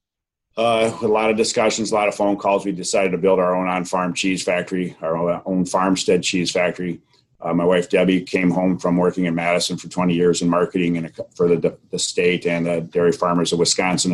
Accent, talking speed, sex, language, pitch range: American, 210 wpm, male, English, 90-95 Hz